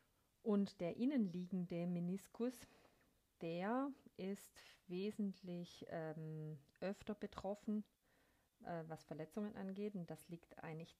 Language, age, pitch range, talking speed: German, 40-59, 160-195 Hz, 100 wpm